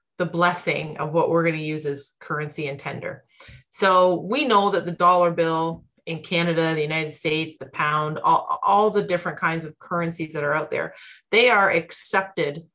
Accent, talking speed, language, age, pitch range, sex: American, 190 wpm, English, 30-49, 160-195 Hz, female